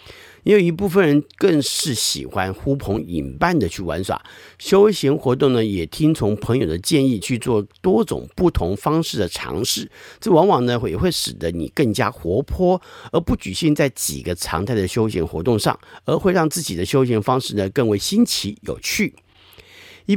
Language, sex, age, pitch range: Chinese, male, 50-69, 100-155 Hz